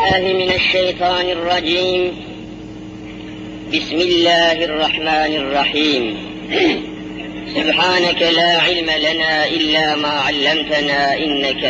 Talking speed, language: 80 wpm, Turkish